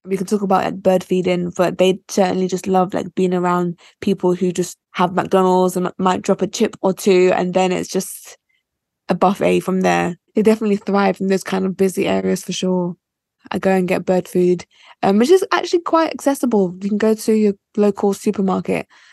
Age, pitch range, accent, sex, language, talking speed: 10-29, 190-220 Hz, British, female, English, 205 wpm